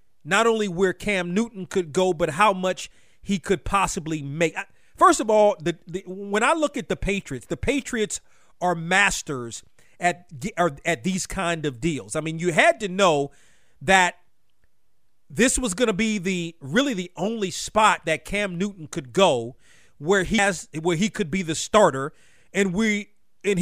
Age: 40-59